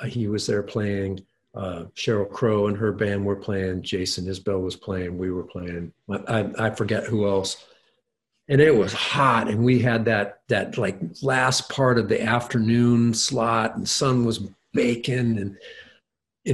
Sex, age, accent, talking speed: male, 50-69, American, 170 wpm